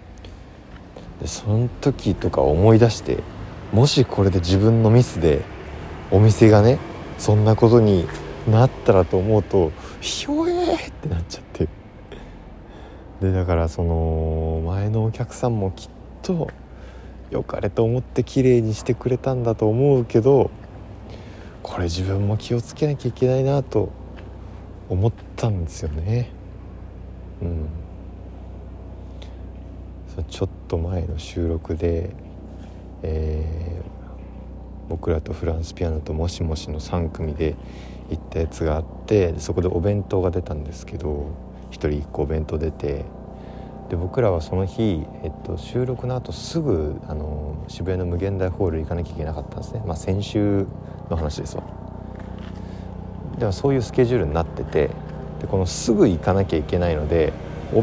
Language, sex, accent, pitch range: Japanese, male, native, 80-110 Hz